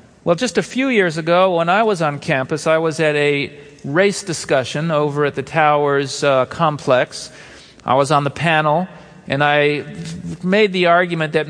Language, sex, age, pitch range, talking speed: English, male, 40-59, 140-180 Hz, 175 wpm